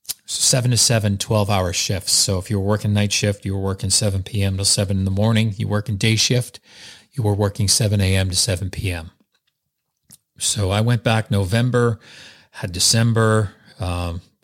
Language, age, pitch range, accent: English, 40-59, 100-120 Hz, American